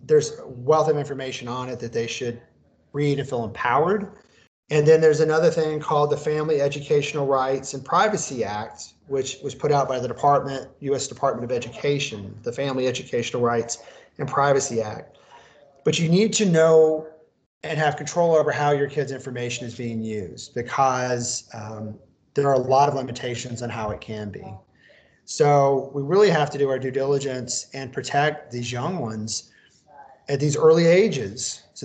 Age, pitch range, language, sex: 30-49, 125-150 Hz, English, male